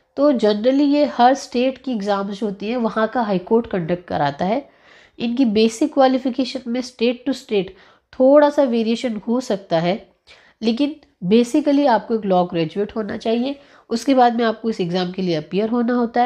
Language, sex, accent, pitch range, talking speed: Hindi, female, native, 195-245 Hz, 175 wpm